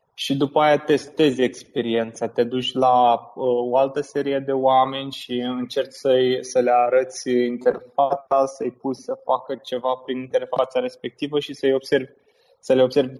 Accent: native